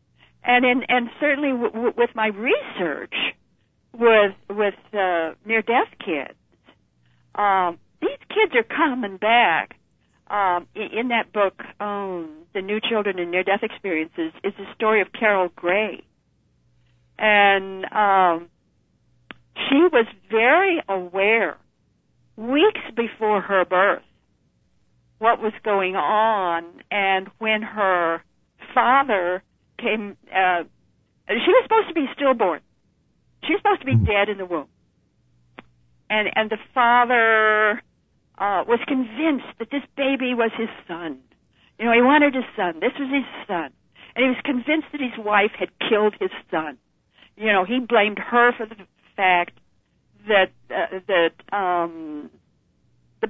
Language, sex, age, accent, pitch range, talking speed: English, female, 60-79, American, 190-245 Hz, 135 wpm